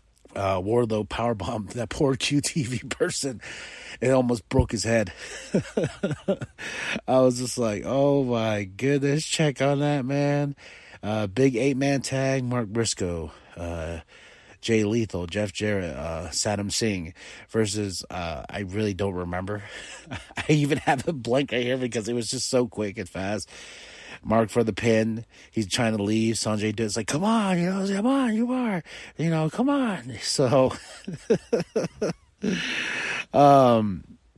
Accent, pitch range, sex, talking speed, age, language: American, 105-140 Hz, male, 145 wpm, 30-49, English